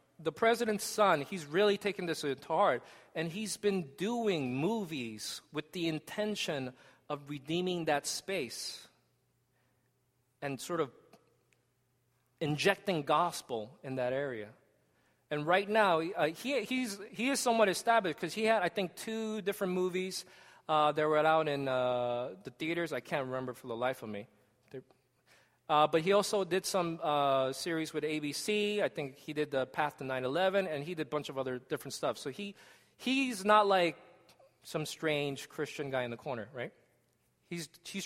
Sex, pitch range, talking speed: male, 130-190 Hz, 165 wpm